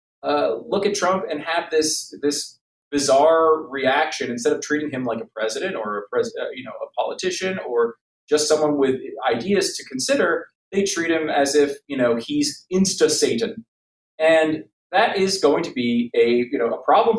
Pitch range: 145-225 Hz